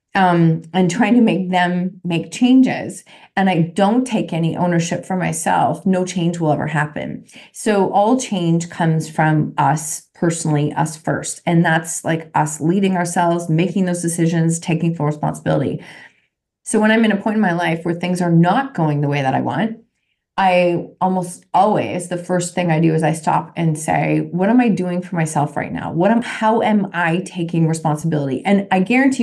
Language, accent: English, American